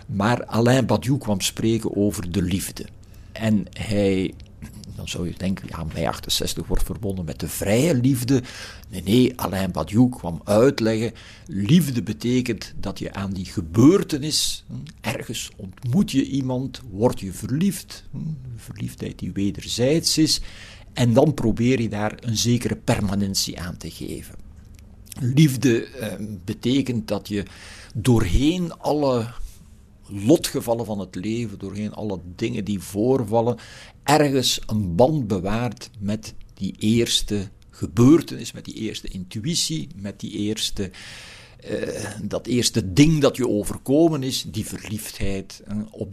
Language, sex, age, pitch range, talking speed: Dutch, male, 60-79, 95-125 Hz, 130 wpm